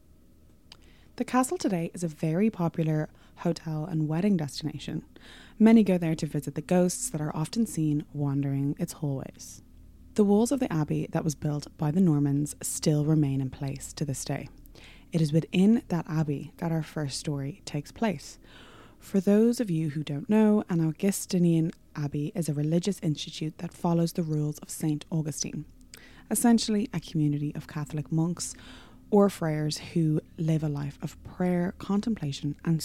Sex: female